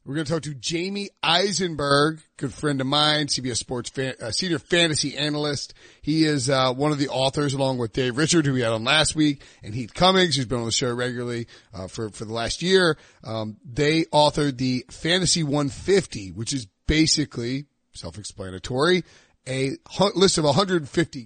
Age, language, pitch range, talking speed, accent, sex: 30-49, English, 125-155 Hz, 185 wpm, American, male